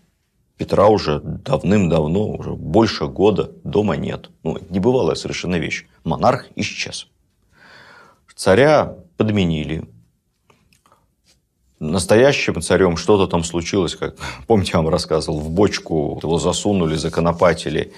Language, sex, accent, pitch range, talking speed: Russian, male, native, 85-105 Hz, 105 wpm